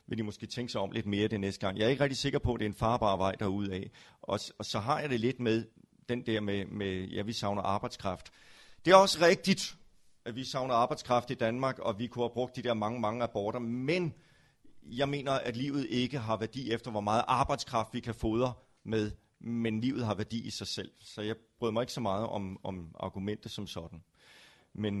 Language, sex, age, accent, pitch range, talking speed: Danish, male, 30-49, native, 105-125 Hz, 230 wpm